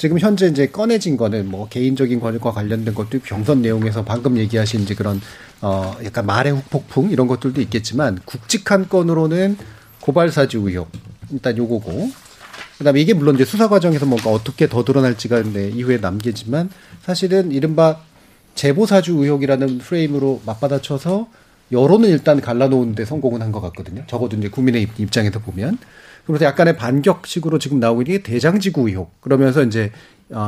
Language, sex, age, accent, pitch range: Korean, male, 40-59, native, 115-170 Hz